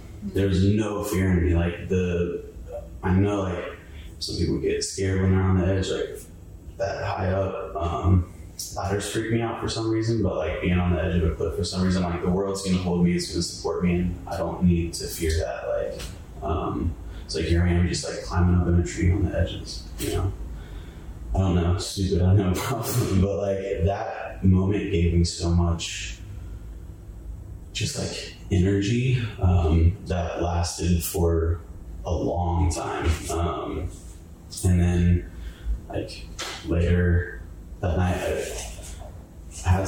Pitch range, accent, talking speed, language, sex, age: 85-95 Hz, American, 170 wpm, English, male, 20-39